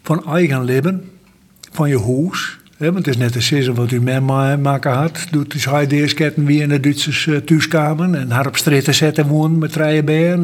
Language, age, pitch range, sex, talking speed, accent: Dutch, 60-79, 130-160 Hz, male, 200 wpm, Dutch